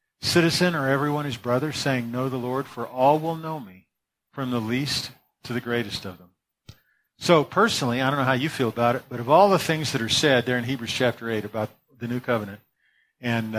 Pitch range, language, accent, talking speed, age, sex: 120-150 Hz, English, American, 220 wpm, 40-59, male